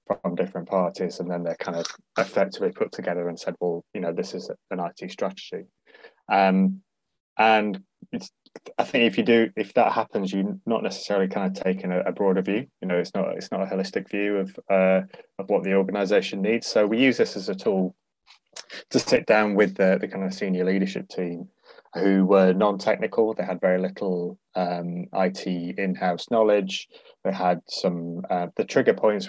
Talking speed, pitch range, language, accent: 195 wpm, 90-100 Hz, English, British